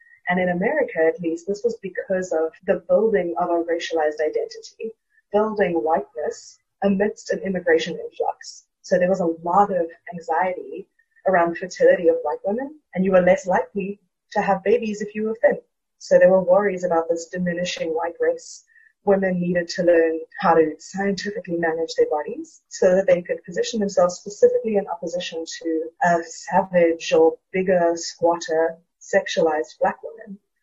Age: 30-49